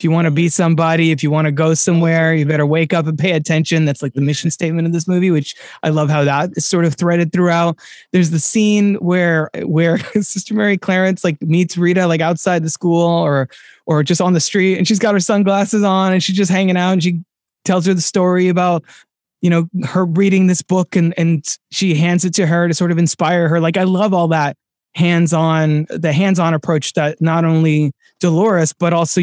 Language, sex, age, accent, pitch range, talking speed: English, male, 20-39, American, 160-185 Hz, 225 wpm